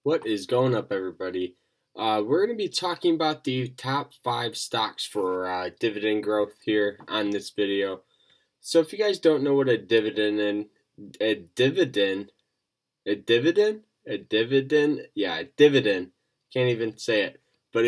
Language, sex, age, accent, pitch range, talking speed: English, male, 10-29, American, 100-135 Hz, 160 wpm